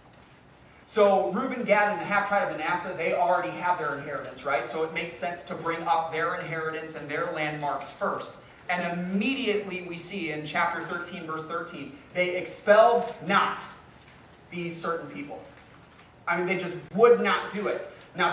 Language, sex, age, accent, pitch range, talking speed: English, male, 30-49, American, 175-245 Hz, 165 wpm